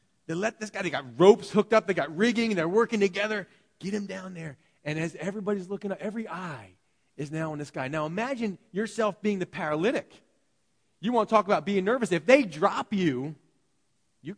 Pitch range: 115-180 Hz